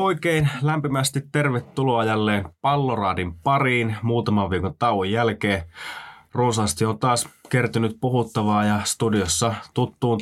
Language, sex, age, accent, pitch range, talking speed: Finnish, male, 20-39, native, 105-125 Hz, 105 wpm